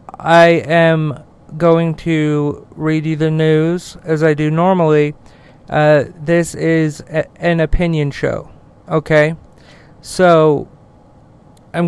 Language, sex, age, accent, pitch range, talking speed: English, male, 40-59, American, 150-160 Hz, 105 wpm